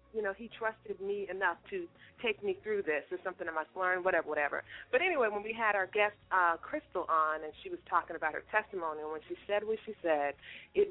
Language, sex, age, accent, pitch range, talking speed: English, female, 30-49, American, 160-245 Hz, 235 wpm